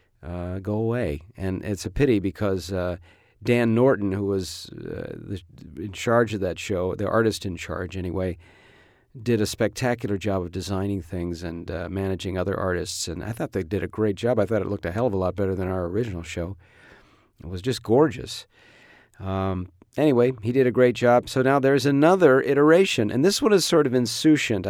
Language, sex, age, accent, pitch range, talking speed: English, male, 50-69, American, 100-125 Hz, 195 wpm